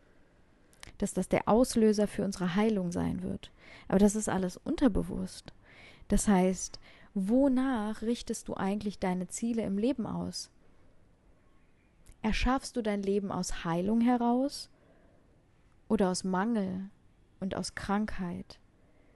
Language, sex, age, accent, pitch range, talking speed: German, female, 20-39, German, 195-235 Hz, 120 wpm